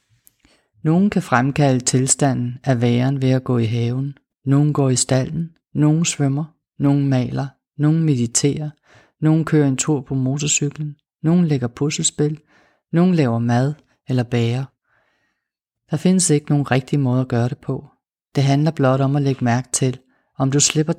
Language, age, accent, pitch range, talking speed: Danish, 30-49, native, 130-150 Hz, 160 wpm